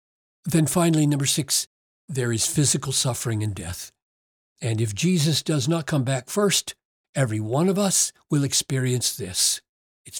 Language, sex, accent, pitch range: English, male, American, 125-190 Hz